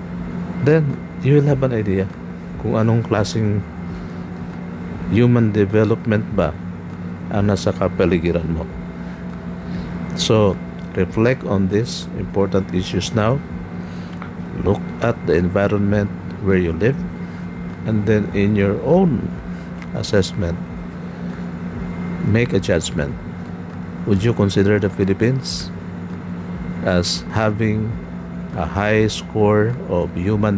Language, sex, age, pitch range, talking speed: Filipino, male, 50-69, 85-105 Hz, 100 wpm